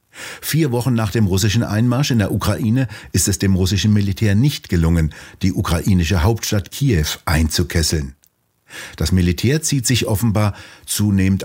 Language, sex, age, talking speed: German, male, 60-79, 140 wpm